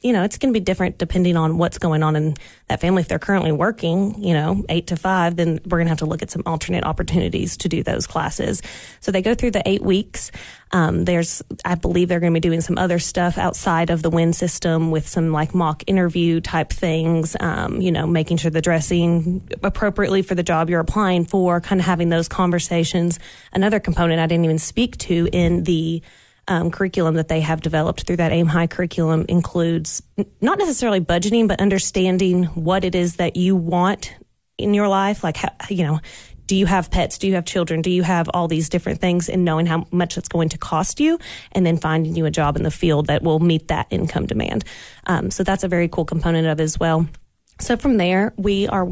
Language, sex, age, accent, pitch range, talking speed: English, female, 20-39, American, 165-185 Hz, 225 wpm